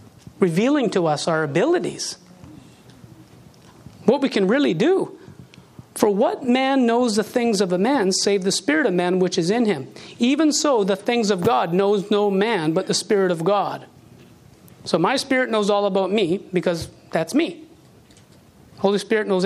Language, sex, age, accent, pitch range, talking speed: English, male, 40-59, American, 180-230 Hz, 170 wpm